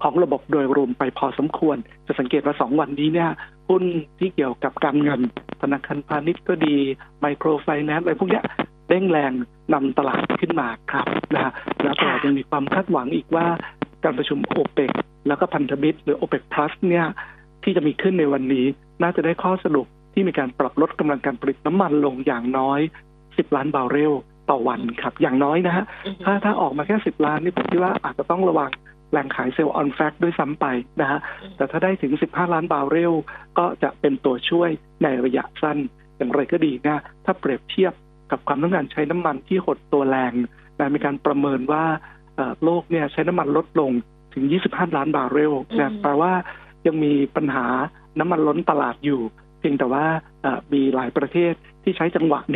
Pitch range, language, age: 140-170 Hz, Thai, 60-79